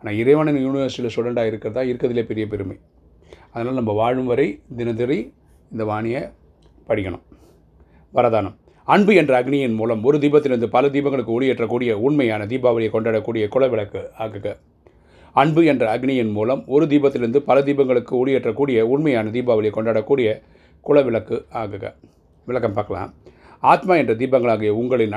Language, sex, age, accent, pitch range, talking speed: Tamil, male, 30-49, native, 110-135 Hz, 120 wpm